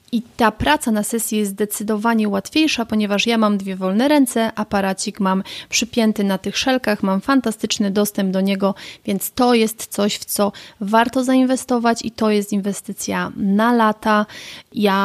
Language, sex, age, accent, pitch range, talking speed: Polish, female, 30-49, native, 190-230 Hz, 160 wpm